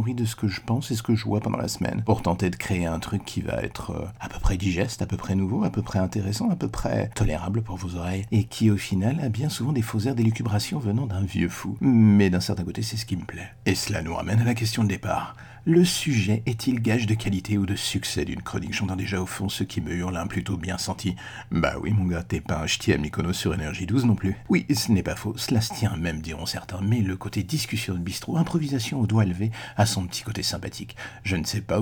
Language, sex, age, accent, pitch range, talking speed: French, male, 50-69, French, 95-115 Hz, 270 wpm